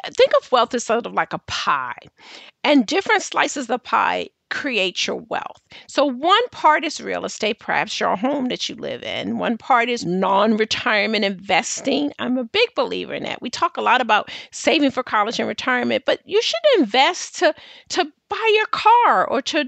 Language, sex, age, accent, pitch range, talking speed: English, female, 50-69, American, 245-360 Hz, 190 wpm